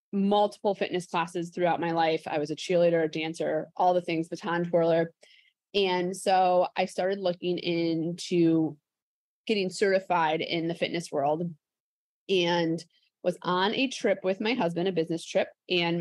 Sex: female